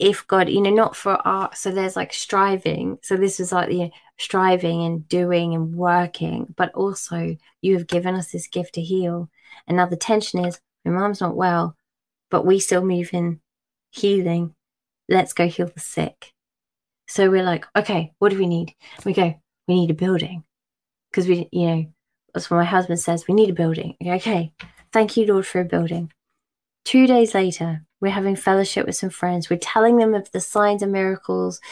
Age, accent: 20-39, British